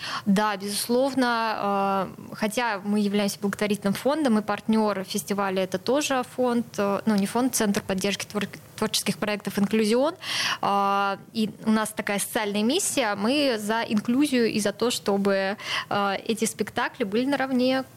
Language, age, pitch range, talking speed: Russian, 20-39, 200-225 Hz, 125 wpm